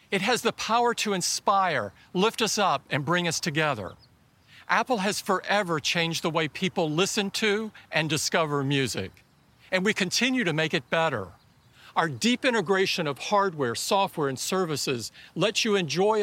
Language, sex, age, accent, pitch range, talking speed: English, male, 50-69, American, 145-195 Hz, 160 wpm